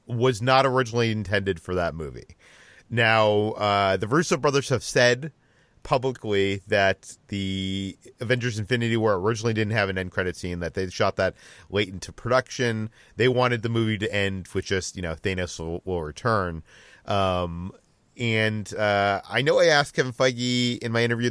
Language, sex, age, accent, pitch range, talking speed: English, male, 40-59, American, 95-120 Hz, 170 wpm